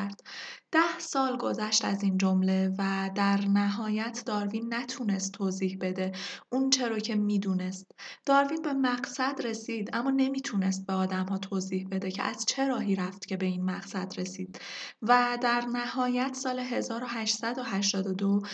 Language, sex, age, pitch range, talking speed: Persian, female, 20-39, 195-245 Hz, 135 wpm